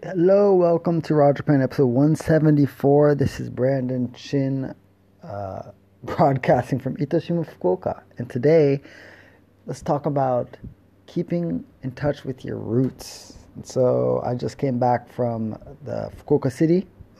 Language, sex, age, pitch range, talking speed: English, male, 30-49, 110-135 Hz, 135 wpm